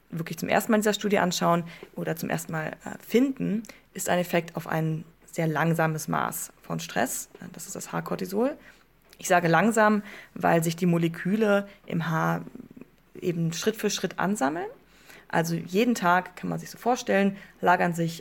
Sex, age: female, 20-39